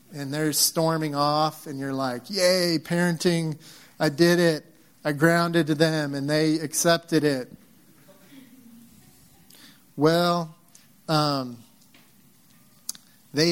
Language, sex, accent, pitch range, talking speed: English, male, American, 145-180 Hz, 100 wpm